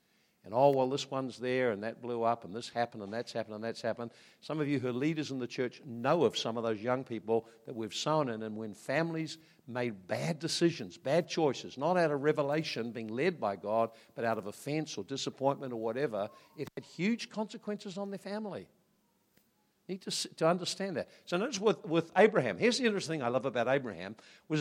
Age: 60-79